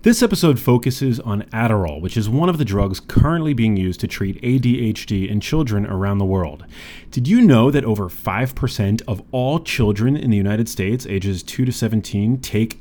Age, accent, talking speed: 30-49, American, 185 wpm